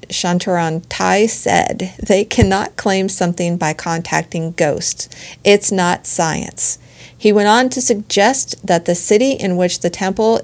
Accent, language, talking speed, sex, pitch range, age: American, English, 145 wpm, female, 175-220 Hz, 40-59